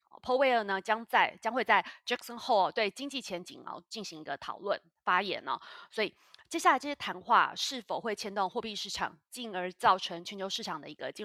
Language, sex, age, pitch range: Chinese, female, 20-39, 180-230 Hz